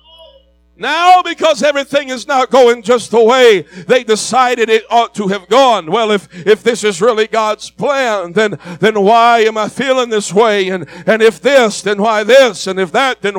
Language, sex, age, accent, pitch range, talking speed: English, male, 60-79, American, 175-270 Hz, 195 wpm